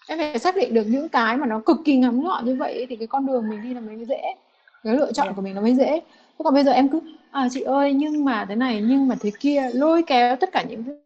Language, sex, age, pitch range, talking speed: Vietnamese, female, 20-39, 225-275 Hz, 295 wpm